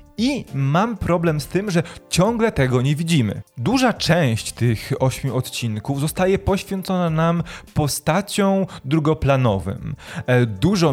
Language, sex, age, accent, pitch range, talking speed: Polish, male, 20-39, native, 120-155 Hz, 115 wpm